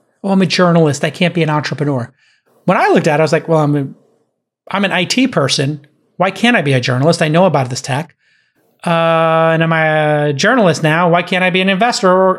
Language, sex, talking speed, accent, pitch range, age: English, male, 240 wpm, American, 150-190 Hz, 30-49